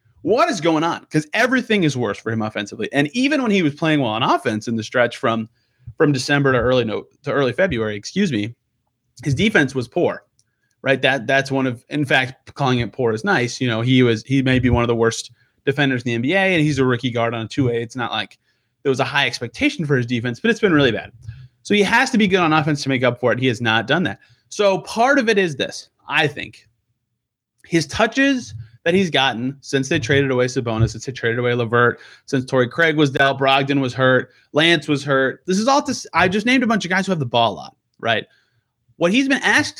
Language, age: English, 30-49